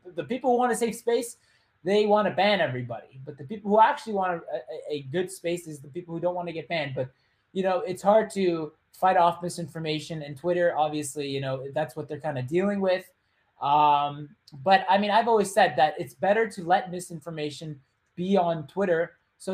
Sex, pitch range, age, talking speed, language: male, 150-205 Hz, 20-39, 210 wpm, English